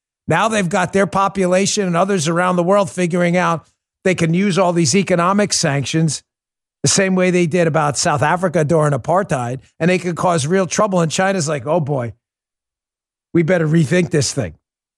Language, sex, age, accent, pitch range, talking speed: English, male, 50-69, American, 120-170 Hz, 180 wpm